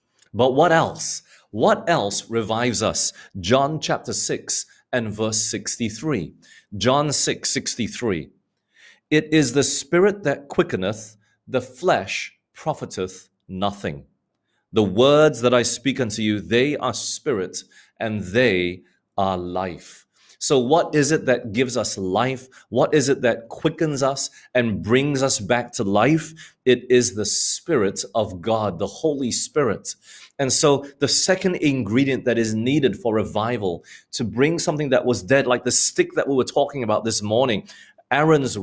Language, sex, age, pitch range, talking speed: English, male, 30-49, 110-140 Hz, 150 wpm